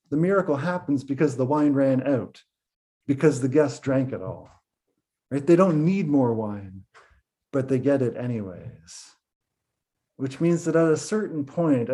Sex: male